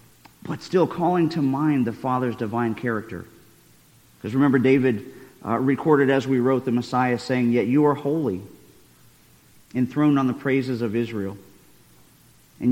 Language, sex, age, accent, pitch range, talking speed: English, male, 40-59, American, 110-145 Hz, 145 wpm